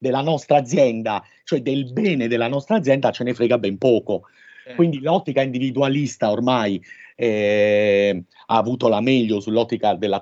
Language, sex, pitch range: Italian, male, 120-180 Hz